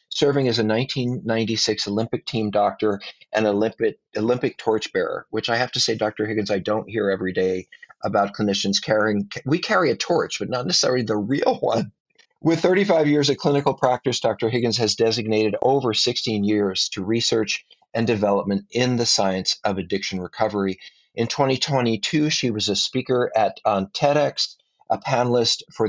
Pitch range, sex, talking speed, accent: 105-130 Hz, male, 165 wpm, American